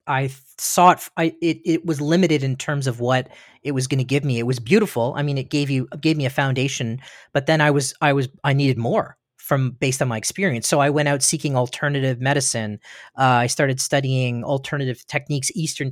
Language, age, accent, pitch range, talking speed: English, 40-59, American, 130-150 Hz, 220 wpm